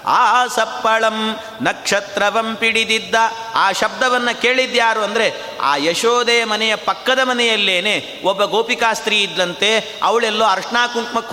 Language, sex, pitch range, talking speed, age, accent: Kannada, male, 200-230 Hz, 100 wpm, 30-49, native